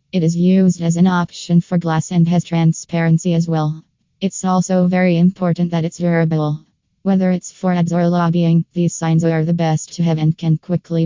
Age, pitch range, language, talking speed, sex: 20-39, 160-175 Hz, English, 195 wpm, female